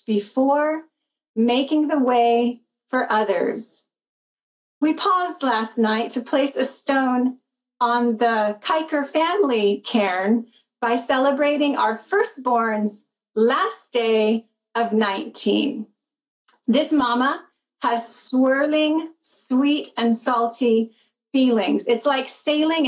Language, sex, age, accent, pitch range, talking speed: English, female, 30-49, American, 240-310 Hz, 100 wpm